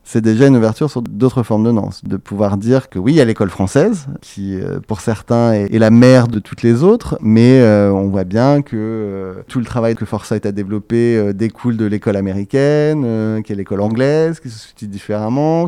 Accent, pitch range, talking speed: French, 105-125 Hz, 220 wpm